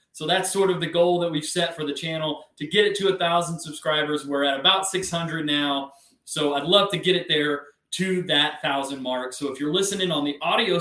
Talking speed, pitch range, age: 235 wpm, 145-185 Hz, 30-49